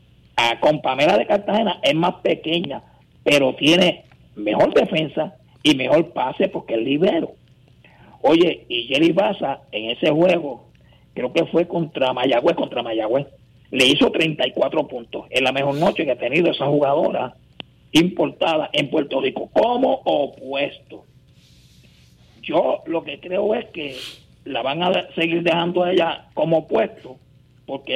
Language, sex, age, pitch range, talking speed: Spanish, male, 50-69, 135-175 Hz, 140 wpm